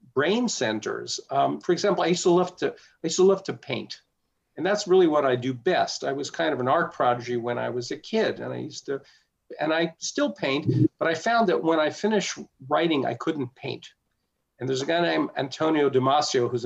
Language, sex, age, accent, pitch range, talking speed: English, male, 50-69, American, 130-165 Hz, 225 wpm